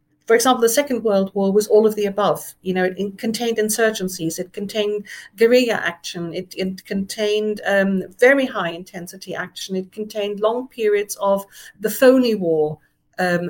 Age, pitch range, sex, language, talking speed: 50-69, 190-235 Hz, female, English, 160 wpm